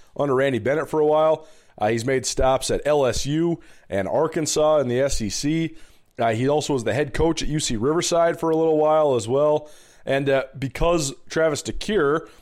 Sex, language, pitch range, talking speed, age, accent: male, English, 120-150 Hz, 185 wpm, 30-49, American